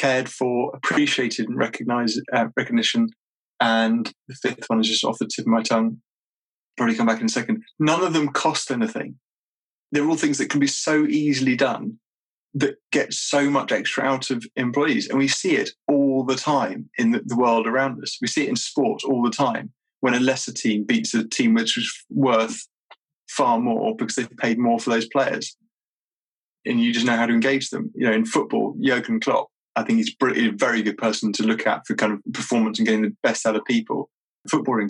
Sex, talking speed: male, 215 wpm